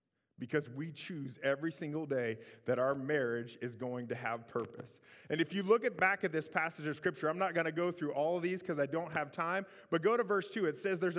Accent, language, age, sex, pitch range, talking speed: American, English, 30-49, male, 155-215 Hz, 250 wpm